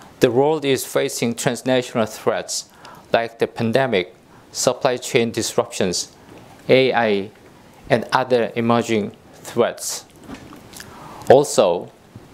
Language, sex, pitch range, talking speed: English, male, 115-145 Hz, 90 wpm